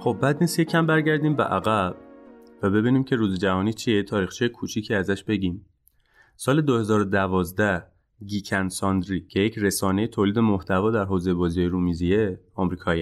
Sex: male